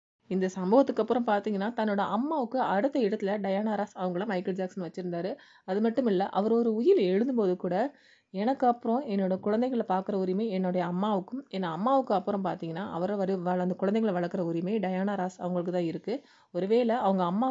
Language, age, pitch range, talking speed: Tamil, 30-49, 185-230 Hz, 160 wpm